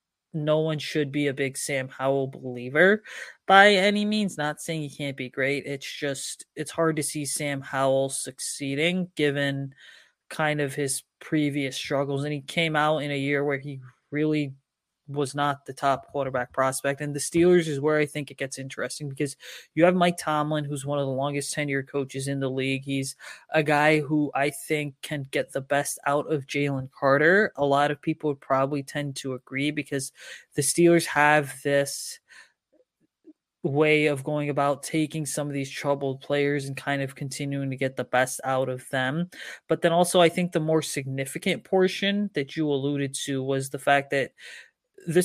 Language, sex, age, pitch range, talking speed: English, male, 20-39, 140-155 Hz, 185 wpm